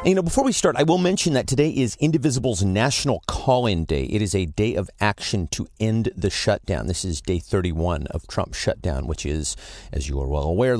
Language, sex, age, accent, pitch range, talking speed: English, male, 40-59, American, 90-120 Hz, 215 wpm